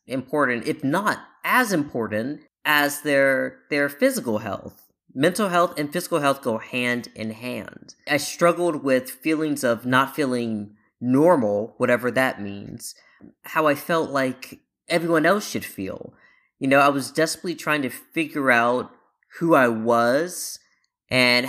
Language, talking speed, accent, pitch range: English, 140 wpm, American, 120-155 Hz